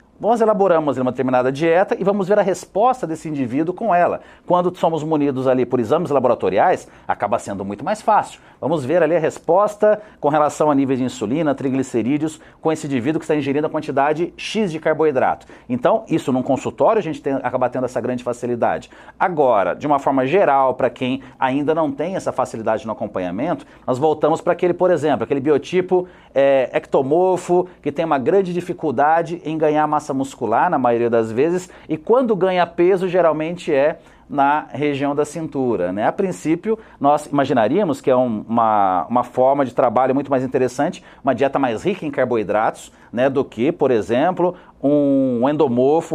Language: Portuguese